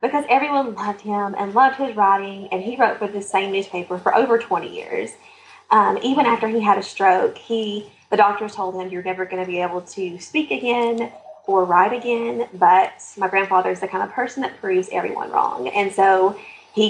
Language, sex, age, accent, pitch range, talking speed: English, female, 20-39, American, 195-270 Hz, 205 wpm